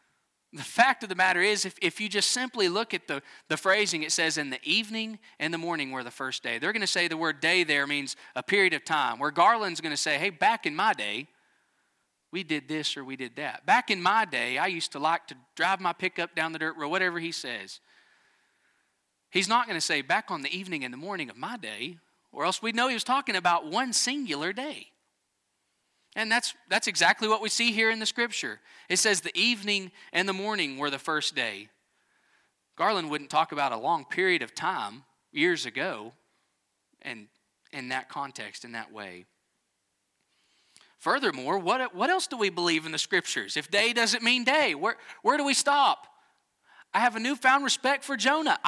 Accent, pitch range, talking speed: American, 160-265 Hz, 210 wpm